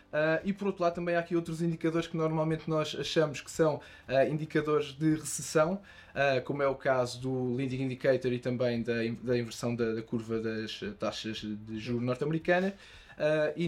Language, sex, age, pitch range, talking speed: Portuguese, male, 20-39, 125-160 Hz, 170 wpm